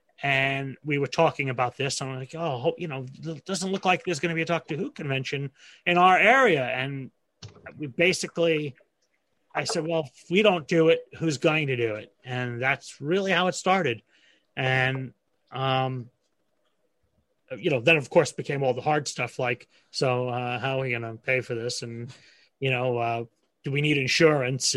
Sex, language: male, English